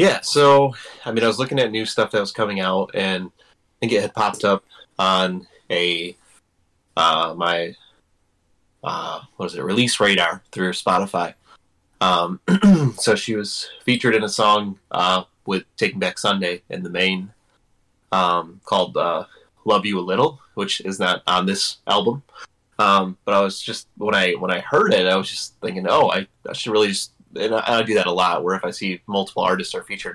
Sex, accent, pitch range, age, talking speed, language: male, American, 90-110 Hz, 20-39, 195 wpm, English